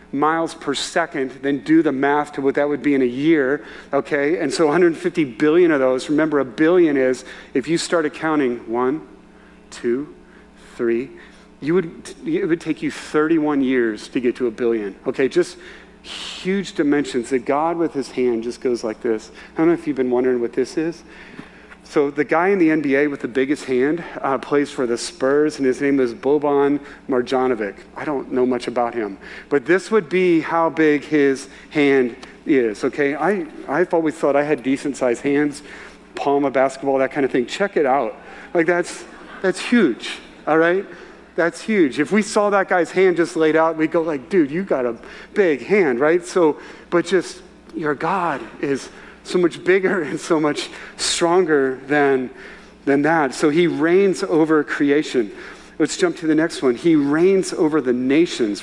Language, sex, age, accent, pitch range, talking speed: English, male, 40-59, American, 135-175 Hz, 185 wpm